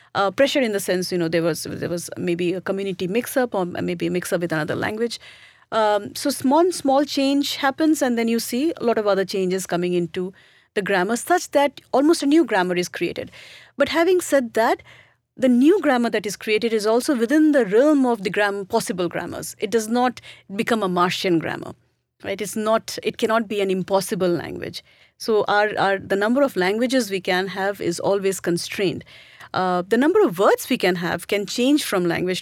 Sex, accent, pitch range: female, Indian, 195-250 Hz